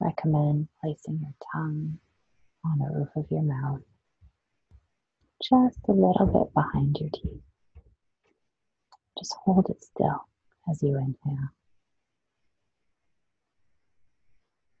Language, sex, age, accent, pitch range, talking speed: English, female, 40-59, American, 140-160 Hz, 95 wpm